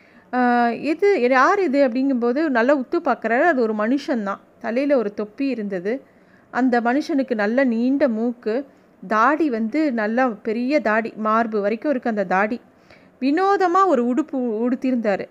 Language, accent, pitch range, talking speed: Tamil, native, 230-290 Hz, 135 wpm